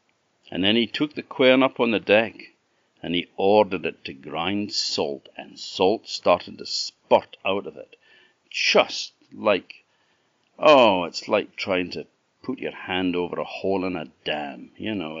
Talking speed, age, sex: 170 wpm, 50-69, male